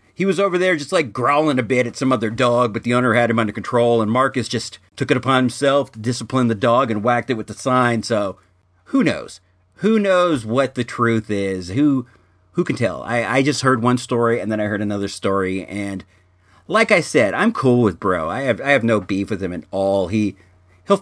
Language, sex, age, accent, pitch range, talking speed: English, male, 40-59, American, 100-150 Hz, 235 wpm